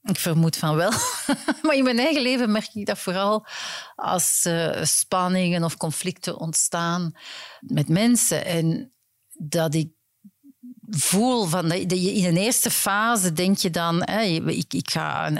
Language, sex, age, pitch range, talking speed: Dutch, female, 50-69, 155-210 Hz, 150 wpm